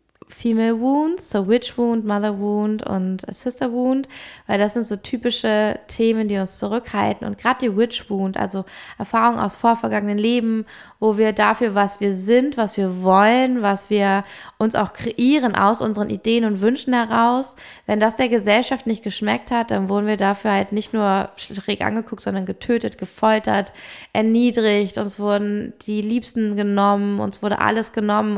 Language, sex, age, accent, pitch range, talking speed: German, female, 20-39, German, 200-230 Hz, 165 wpm